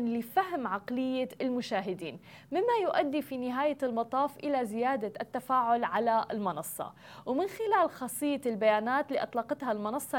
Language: Arabic